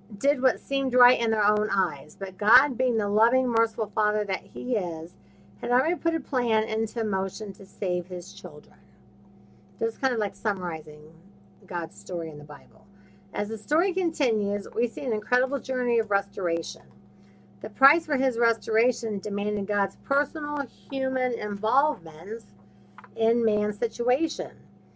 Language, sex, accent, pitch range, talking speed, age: English, female, American, 195-255 Hz, 150 wpm, 50-69